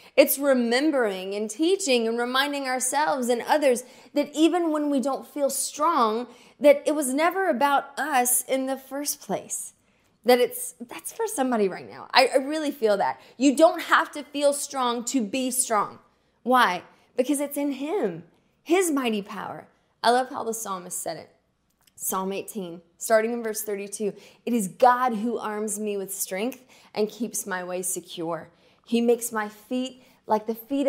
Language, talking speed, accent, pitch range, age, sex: English, 170 wpm, American, 210-270 Hz, 20-39, female